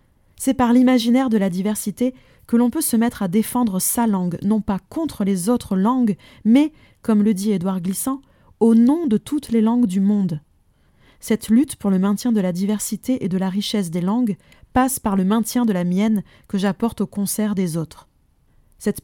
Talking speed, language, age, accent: 200 wpm, French, 20-39, French